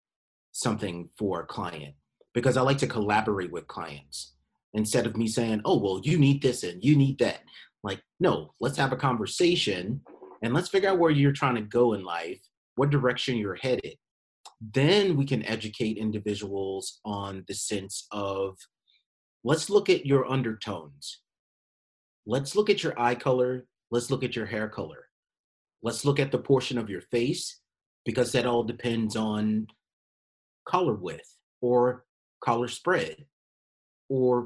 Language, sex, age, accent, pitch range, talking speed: English, male, 30-49, American, 105-135 Hz, 155 wpm